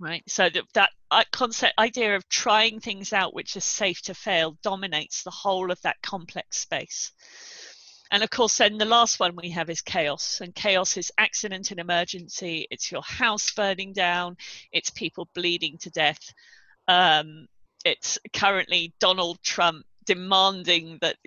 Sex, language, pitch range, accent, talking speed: female, English, 180-230 Hz, British, 160 wpm